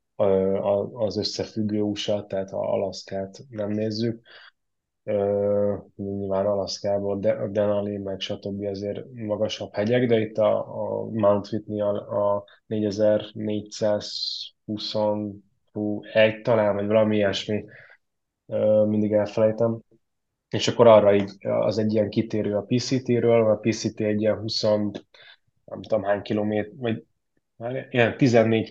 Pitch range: 100-110 Hz